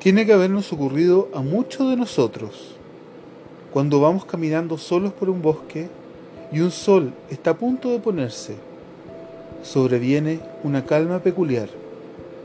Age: 30-49